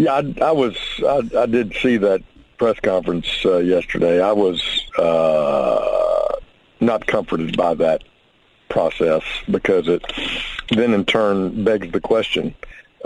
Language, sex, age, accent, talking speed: English, male, 50-69, American, 135 wpm